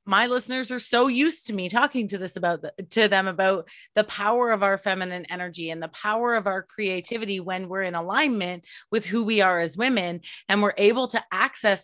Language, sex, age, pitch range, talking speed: English, female, 30-49, 195-260 Hz, 215 wpm